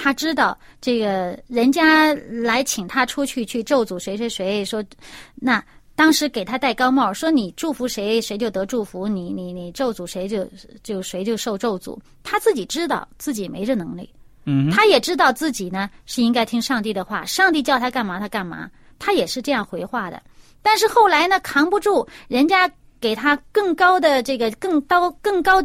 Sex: female